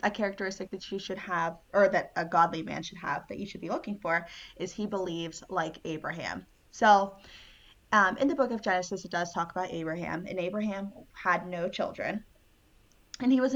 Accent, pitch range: American, 175-205 Hz